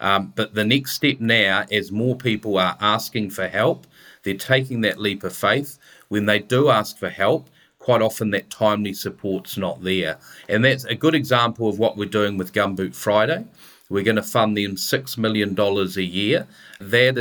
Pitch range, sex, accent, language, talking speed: 100-125 Hz, male, Australian, English, 190 wpm